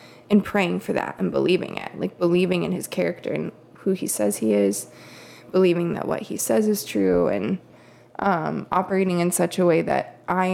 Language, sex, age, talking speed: English, female, 20-39, 195 wpm